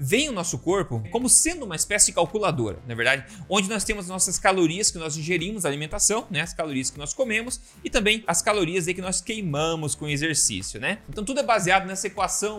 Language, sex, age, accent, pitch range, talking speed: Portuguese, male, 30-49, Brazilian, 150-200 Hz, 220 wpm